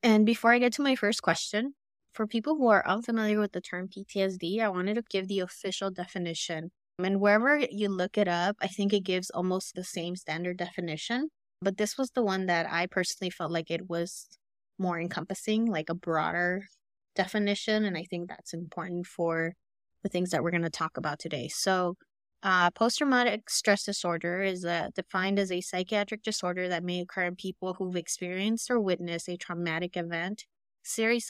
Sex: female